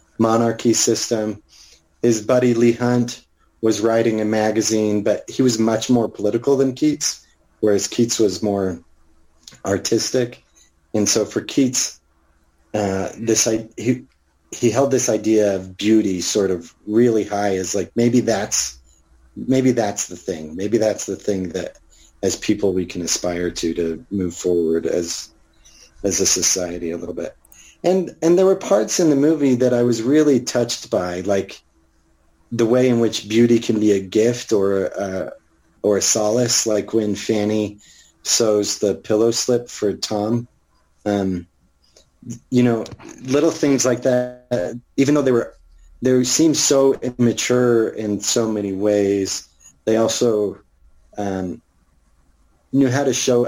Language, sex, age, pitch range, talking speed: English, male, 30-49, 85-120 Hz, 150 wpm